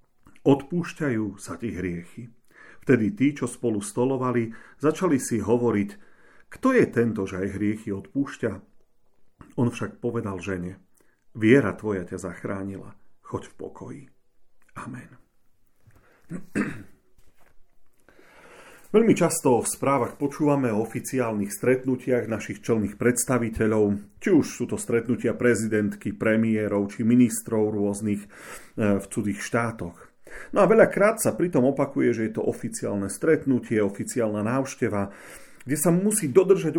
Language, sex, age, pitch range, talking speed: Slovak, male, 40-59, 105-135 Hz, 115 wpm